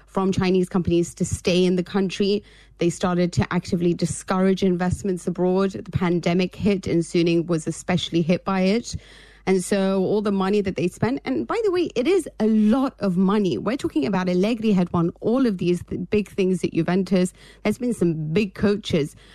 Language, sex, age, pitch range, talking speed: English, female, 30-49, 175-205 Hz, 190 wpm